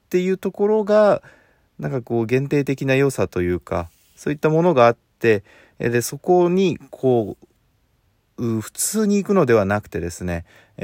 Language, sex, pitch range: Japanese, male, 100-145 Hz